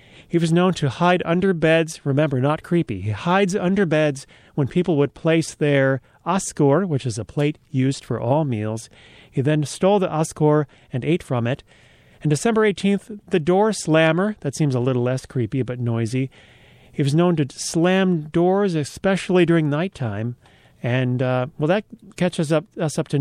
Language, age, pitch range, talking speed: English, 40-59, 130-175 Hz, 180 wpm